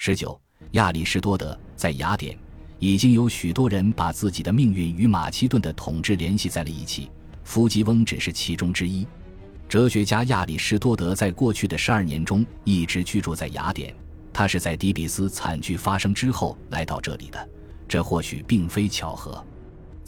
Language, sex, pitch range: Chinese, male, 80-110 Hz